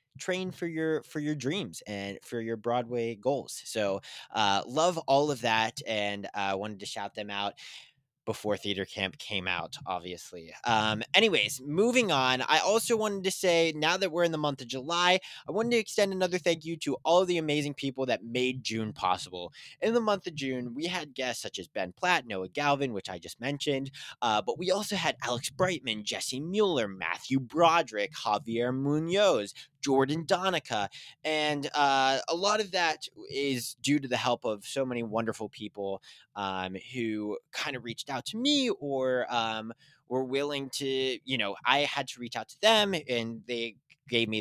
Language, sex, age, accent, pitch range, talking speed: English, male, 20-39, American, 115-155 Hz, 190 wpm